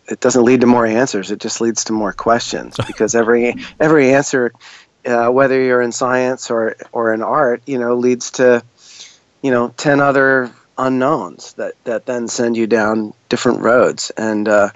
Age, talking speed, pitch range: 30-49, 175 wpm, 110-125 Hz